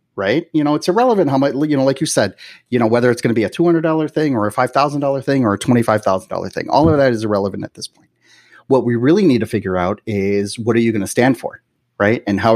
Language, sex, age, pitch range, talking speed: English, male, 30-49, 105-130 Hz, 270 wpm